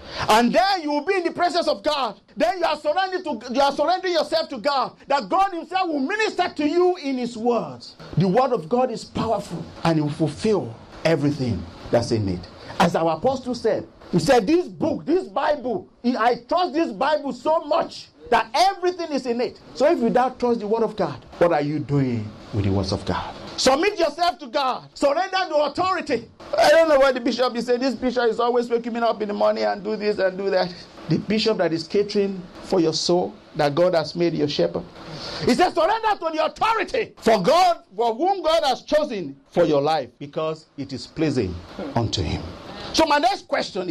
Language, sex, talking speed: English, male, 210 wpm